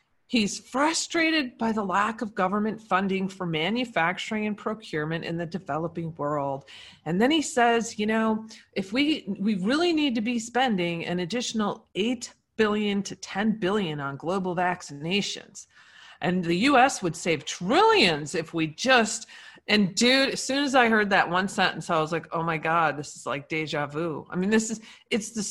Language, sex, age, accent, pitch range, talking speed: English, female, 40-59, American, 175-235 Hz, 180 wpm